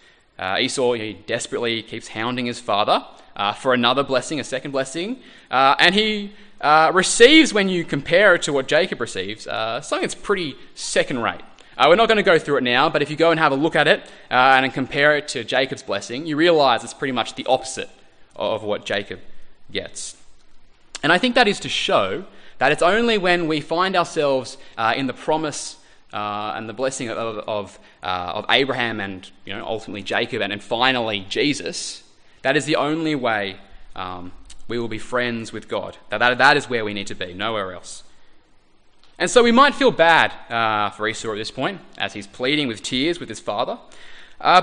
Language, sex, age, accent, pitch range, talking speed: English, male, 20-39, Australian, 110-165 Hz, 205 wpm